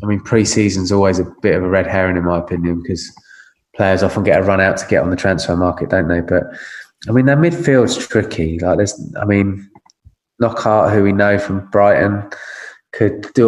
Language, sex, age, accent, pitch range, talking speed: English, male, 20-39, British, 95-110 Hz, 210 wpm